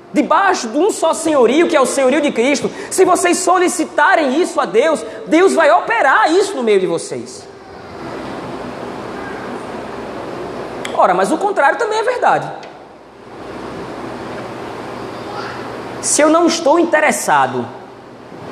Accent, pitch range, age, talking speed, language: Brazilian, 225-335 Hz, 20-39, 120 wpm, Portuguese